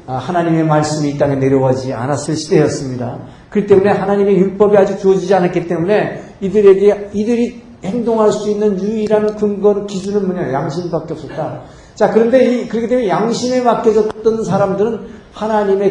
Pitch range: 160-215 Hz